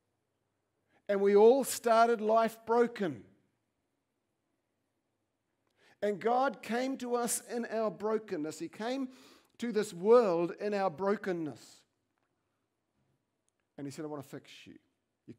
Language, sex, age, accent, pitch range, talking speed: English, male, 50-69, Australian, 165-220 Hz, 120 wpm